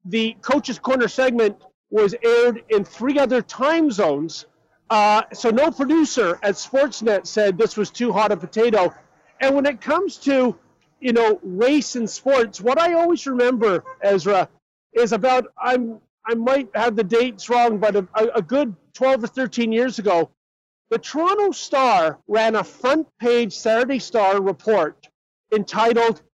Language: English